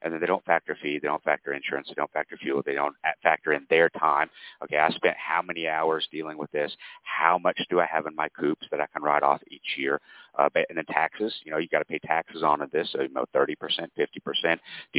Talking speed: 255 wpm